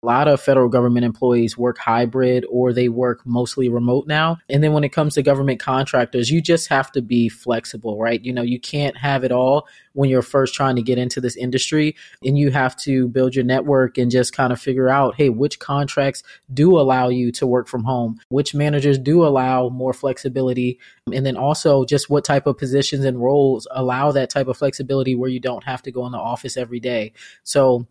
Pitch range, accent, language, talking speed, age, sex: 125-150 Hz, American, English, 215 wpm, 20-39, male